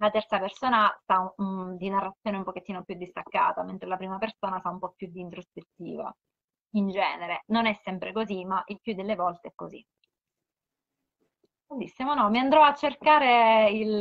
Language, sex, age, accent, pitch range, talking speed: Italian, female, 20-39, native, 200-250 Hz, 175 wpm